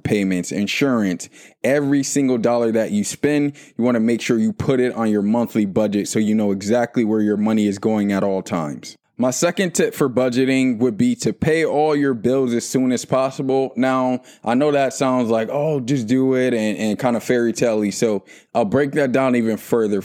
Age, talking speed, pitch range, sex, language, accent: 20-39, 210 wpm, 110-130 Hz, male, English, American